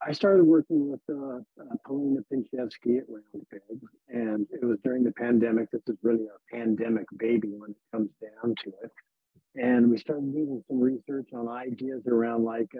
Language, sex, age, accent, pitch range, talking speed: English, male, 50-69, American, 110-130 Hz, 180 wpm